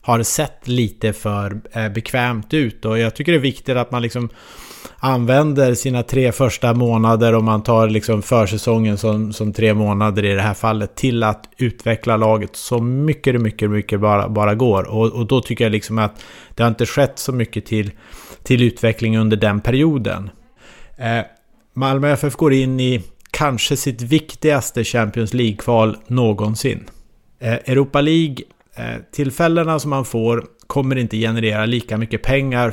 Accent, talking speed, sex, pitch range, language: Norwegian, 165 wpm, male, 110-130 Hz, English